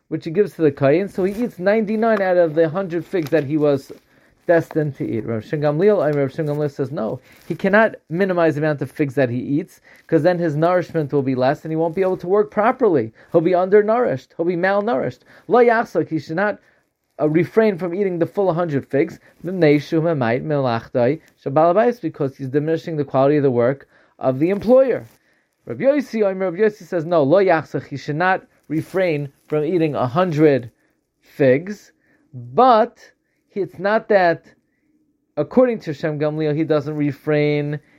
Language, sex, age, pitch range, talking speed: English, male, 30-49, 150-195 Hz, 170 wpm